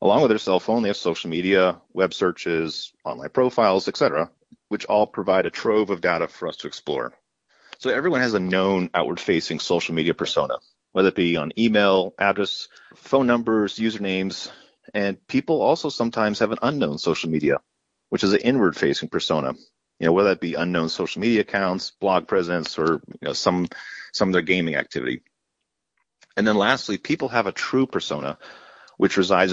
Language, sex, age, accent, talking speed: English, male, 30-49, American, 180 wpm